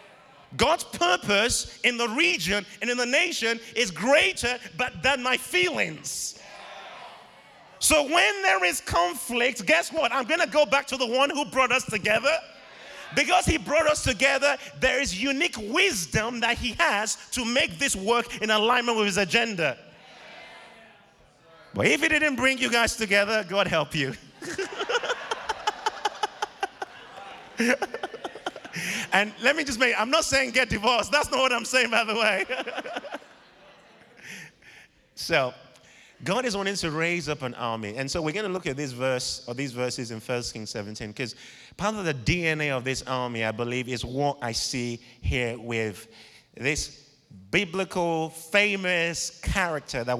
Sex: male